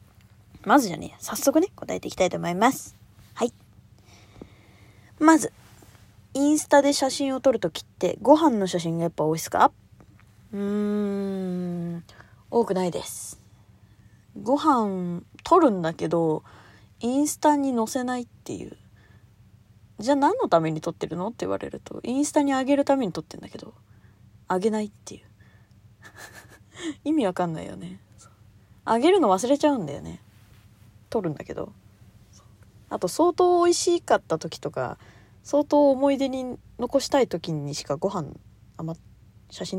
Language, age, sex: Japanese, 20-39, female